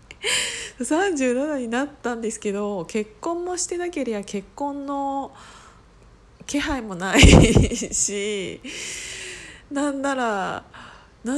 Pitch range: 205-285 Hz